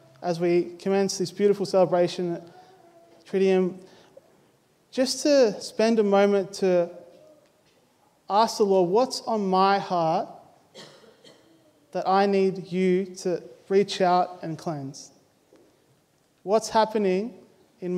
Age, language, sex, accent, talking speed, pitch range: 20-39, English, male, Australian, 110 wpm, 170-195 Hz